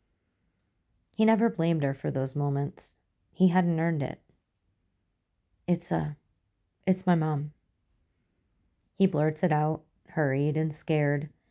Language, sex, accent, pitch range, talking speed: English, female, American, 120-160 Hz, 120 wpm